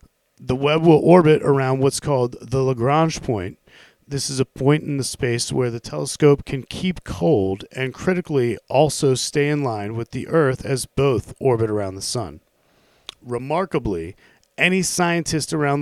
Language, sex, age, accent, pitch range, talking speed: English, male, 40-59, American, 115-150 Hz, 160 wpm